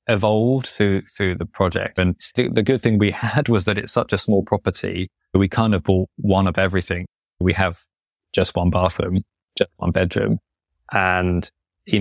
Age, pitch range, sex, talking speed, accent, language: 20-39, 95-105 Hz, male, 180 wpm, British, English